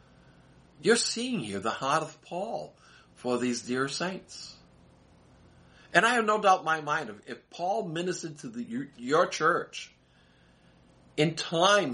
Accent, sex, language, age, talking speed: American, male, English, 50-69, 140 wpm